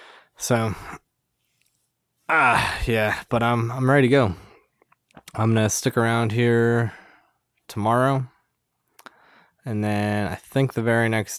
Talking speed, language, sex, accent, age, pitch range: 120 wpm, English, male, American, 20-39, 100-115 Hz